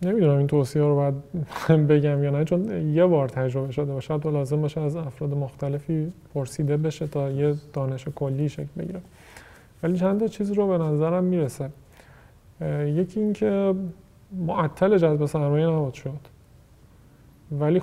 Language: Persian